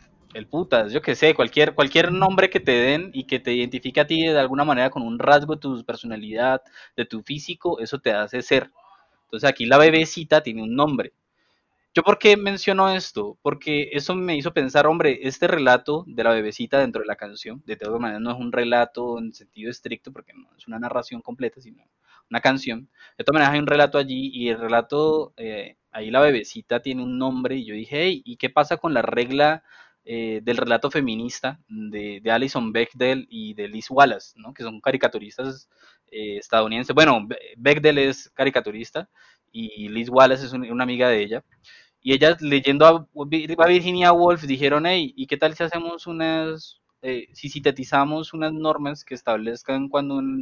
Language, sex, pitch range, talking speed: Spanish, male, 125-160 Hz, 190 wpm